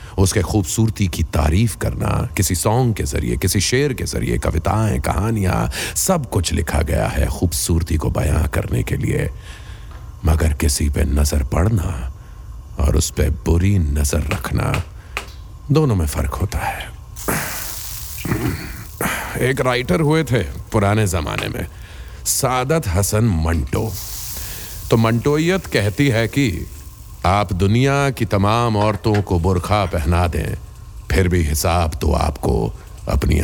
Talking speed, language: 130 wpm, Hindi